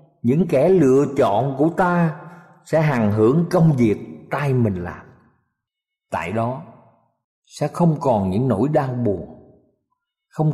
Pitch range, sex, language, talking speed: 135-205 Hz, male, Vietnamese, 135 wpm